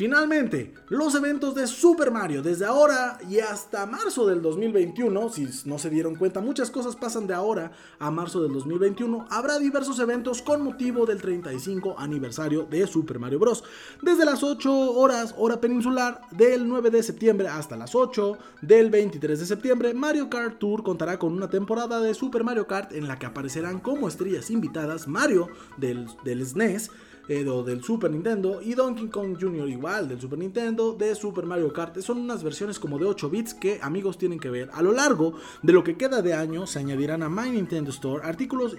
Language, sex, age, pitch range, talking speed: Spanish, male, 30-49, 160-240 Hz, 185 wpm